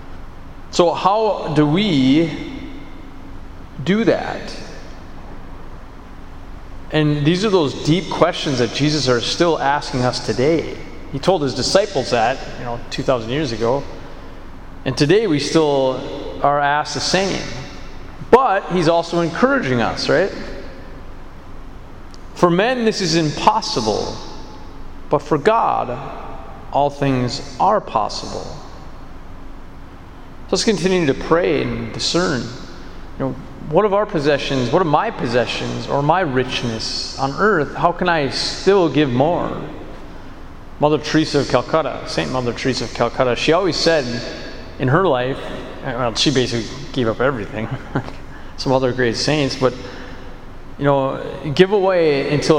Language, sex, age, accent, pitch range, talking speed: English, male, 30-49, American, 120-155 Hz, 130 wpm